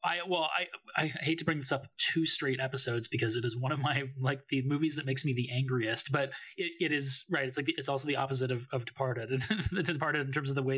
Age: 30-49